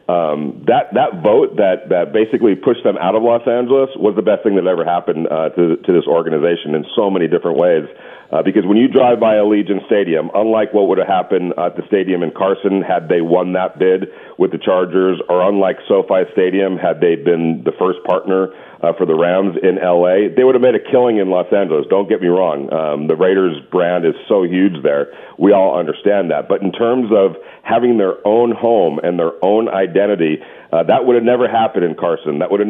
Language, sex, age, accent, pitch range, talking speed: English, male, 40-59, American, 95-120 Hz, 220 wpm